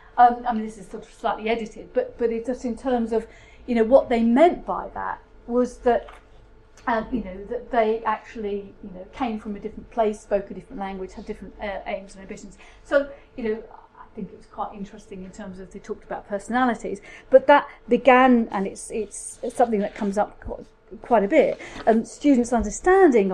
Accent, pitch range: British, 205-245 Hz